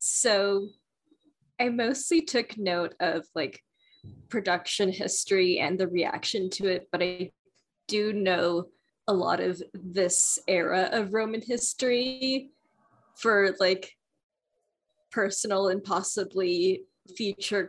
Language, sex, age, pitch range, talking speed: English, female, 20-39, 180-210 Hz, 110 wpm